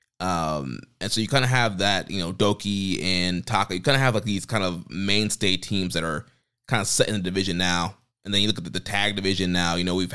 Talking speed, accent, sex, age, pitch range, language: 265 wpm, American, male, 20-39, 90-110 Hz, English